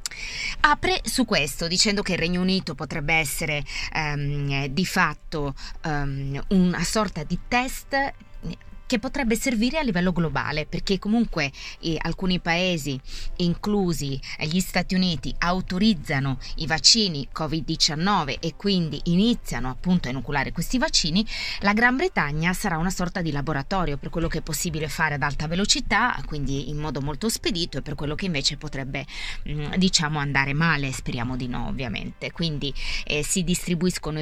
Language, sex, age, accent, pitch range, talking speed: Italian, female, 20-39, native, 150-190 Hz, 145 wpm